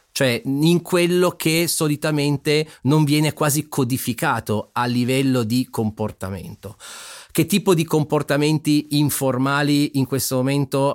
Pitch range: 120-155 Hz